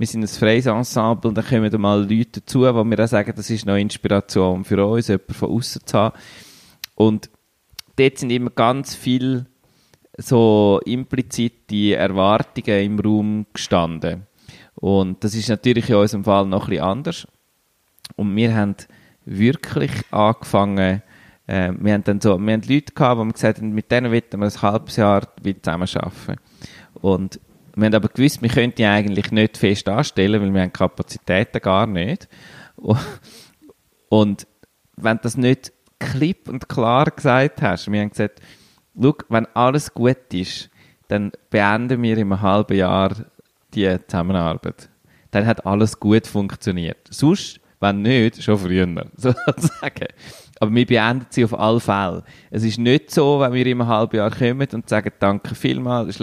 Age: 20-39